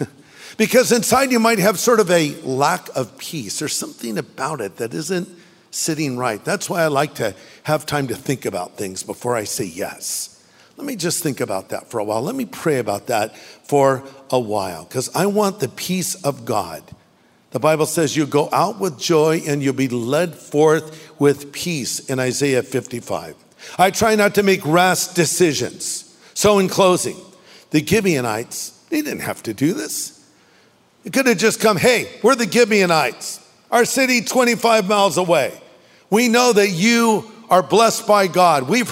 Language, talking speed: English, 180 wpm